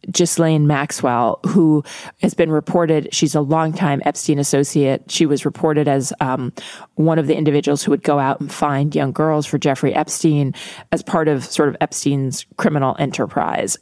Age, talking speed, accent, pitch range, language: 30-49, 170 wpm, American, 140-165 Hz, English